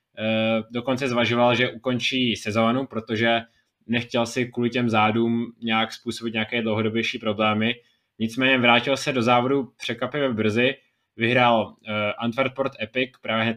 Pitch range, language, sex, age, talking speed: 110-120 Hz, Czech, male, 20-39, 130 wpm